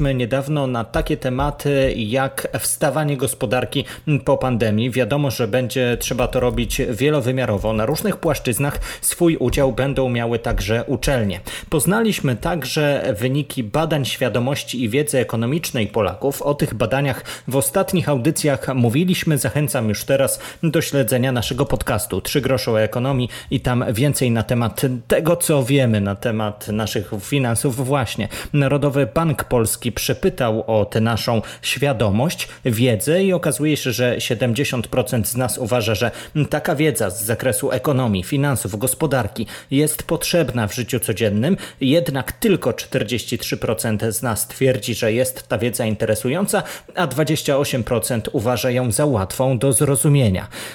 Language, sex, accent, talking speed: Polish, male, native, 135 wpm